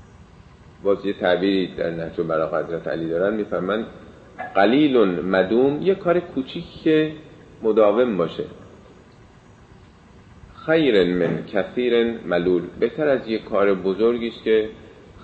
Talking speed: 120 wpm